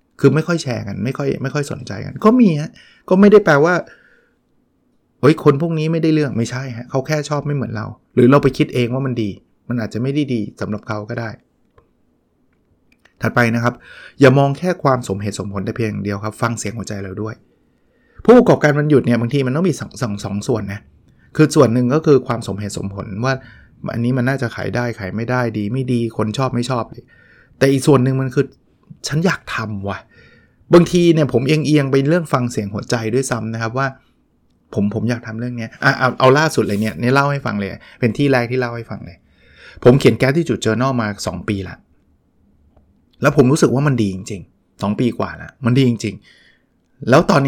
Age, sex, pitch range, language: 20-39, male, 110-140 Hz, Thai